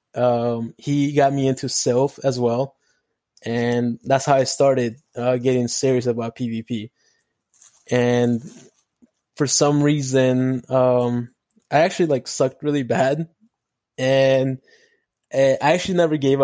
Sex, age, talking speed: male, 20-39, 125 wpm